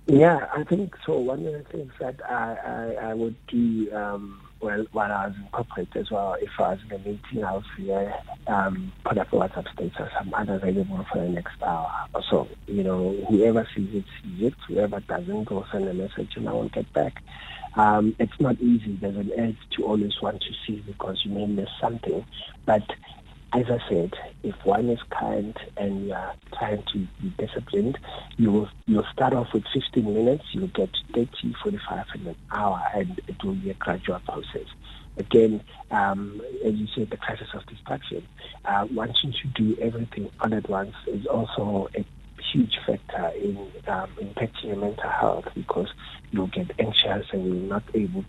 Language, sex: English, male